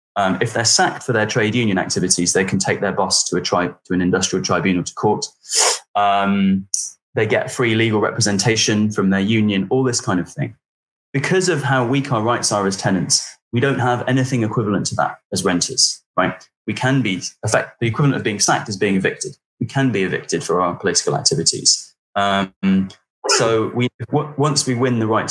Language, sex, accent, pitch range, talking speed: English, male, British, 100-125 Hz, 200 wpm